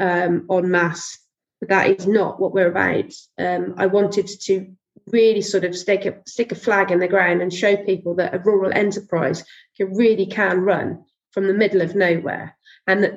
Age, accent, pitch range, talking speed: 30-49, British, 185-210 Hz, 195 wpm